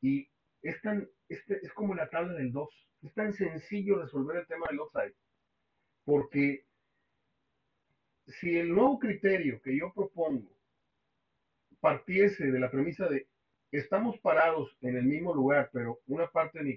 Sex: male